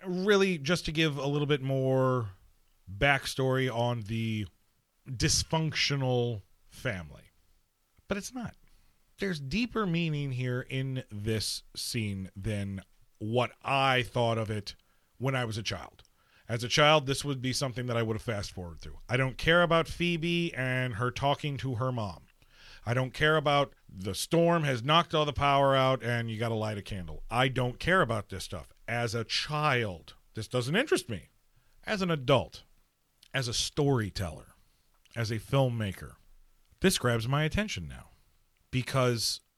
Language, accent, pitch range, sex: English, American, 105-145 Hz, male